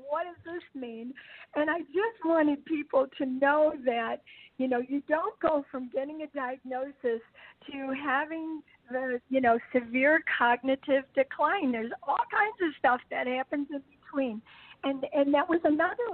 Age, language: 50-69, English